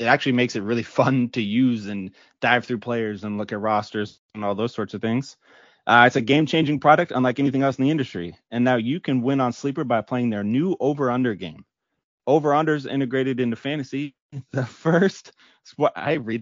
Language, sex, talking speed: English, male, 200 wpm